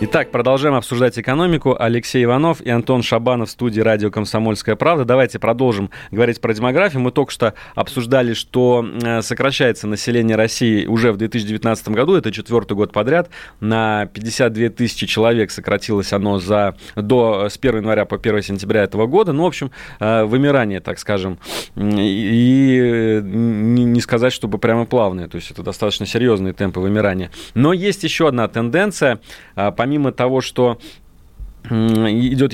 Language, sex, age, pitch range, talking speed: Russian, male, 30-49, 105-130 Hz, 145 wpm